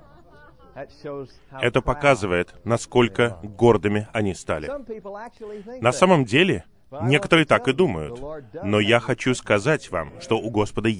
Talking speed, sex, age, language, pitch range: 115 wpm, male, 30-49, Russian, 105-150 Hz